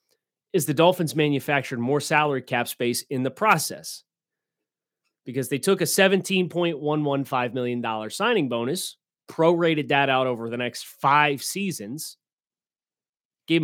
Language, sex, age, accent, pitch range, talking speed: English, male, 30-49, American, 130-170 Hz, 130 wpm